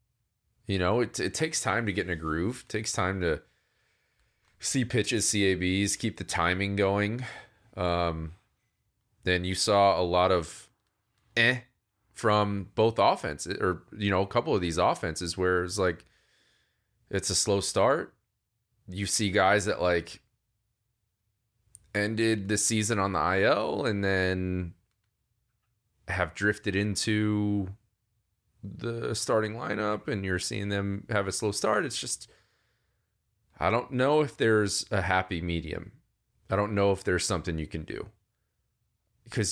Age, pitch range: 20-39, 95-115 Hz